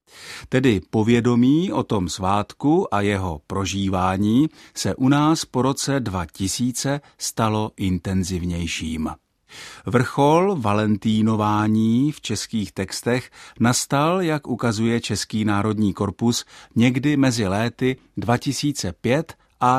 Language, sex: Czech, male